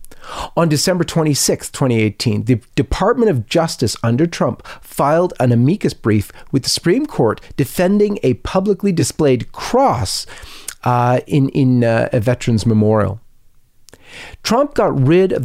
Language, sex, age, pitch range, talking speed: English, male, 40-59, 115-165 Hz, 130 wpm